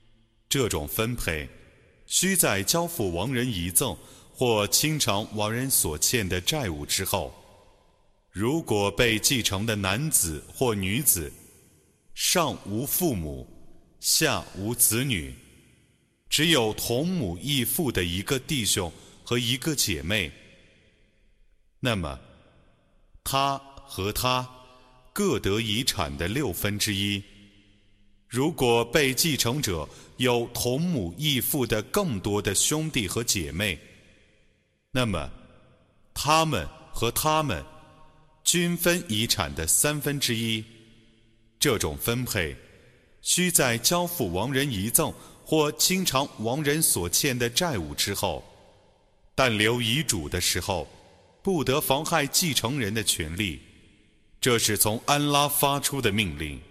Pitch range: 100-140 Hz